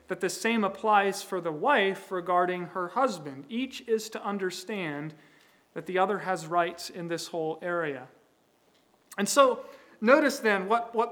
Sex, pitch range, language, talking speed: male, 170-215 Hz, English, 155 wpm